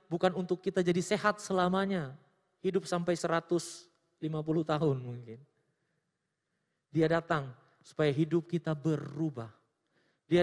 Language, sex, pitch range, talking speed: Indonesian, male, 140-205 Hz, 105 wpm